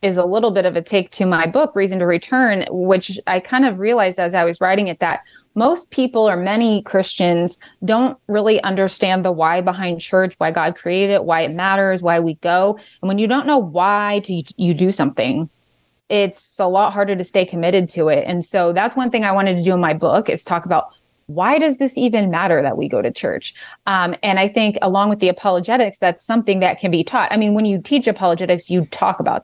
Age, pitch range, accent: 20-39, 175-215 Hz, American